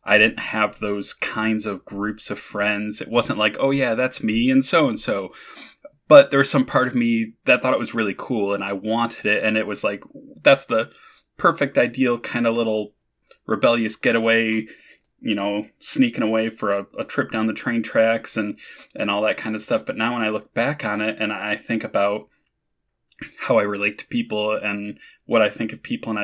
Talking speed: 215 wpm